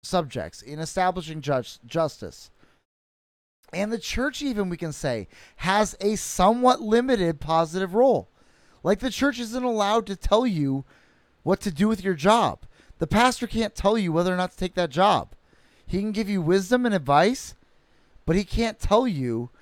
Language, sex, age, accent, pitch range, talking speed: English, male, 30-49, American, 155-205 Hz, 170 wpm